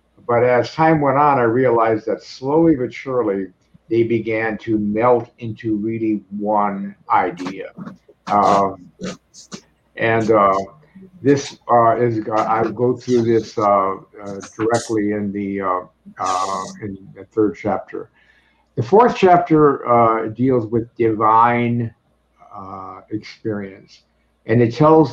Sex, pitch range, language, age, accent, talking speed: male, 100-120 Hz, English, 60-79, American, 125 wpm